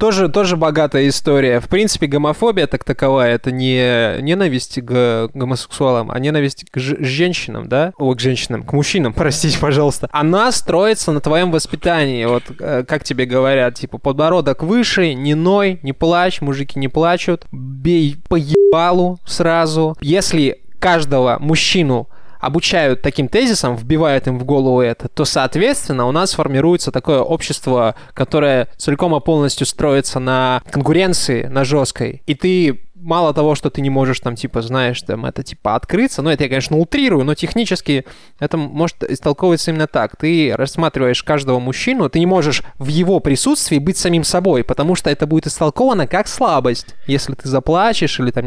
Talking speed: 160 wpm